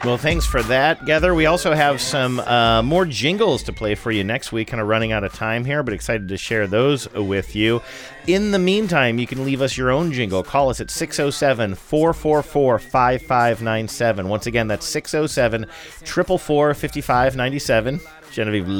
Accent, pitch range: American, 105-145 Hz